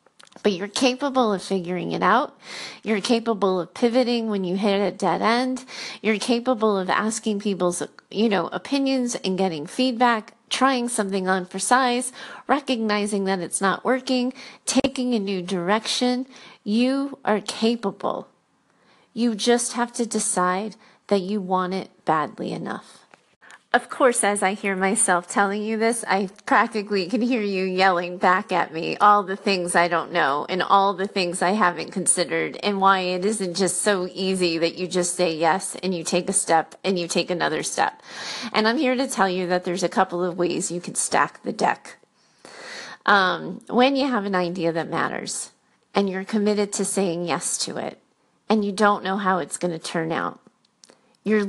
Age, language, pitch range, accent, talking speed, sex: 30-49, English, 180-235 Hz, American, 180 wpm, female